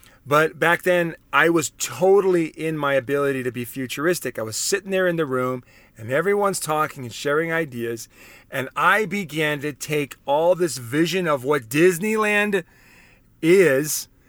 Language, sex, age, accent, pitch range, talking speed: English, male, 40-59, American, 140-200 Hz, 155 wpm